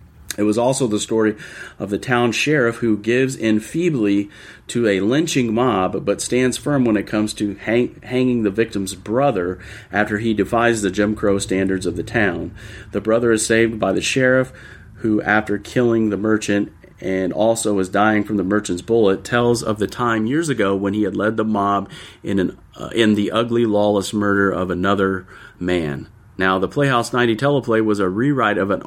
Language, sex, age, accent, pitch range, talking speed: English, male, 40-59, American, 95-115 Hz, 185 wpm